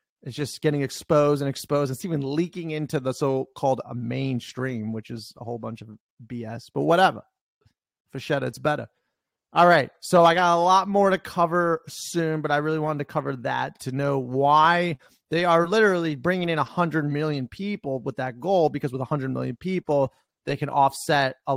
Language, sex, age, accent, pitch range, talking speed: English, male, 30-49, American, 130-160 Hz, 185 wpm